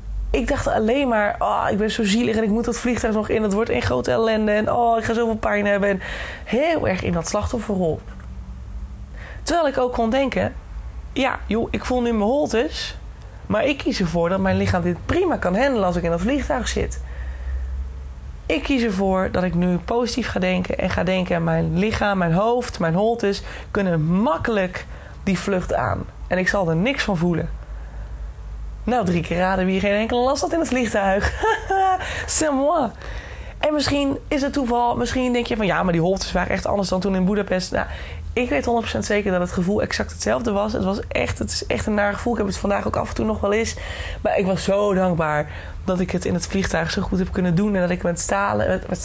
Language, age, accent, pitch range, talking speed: Dutch, 20-39, Dutch, 170-235 Hz, 220 wpm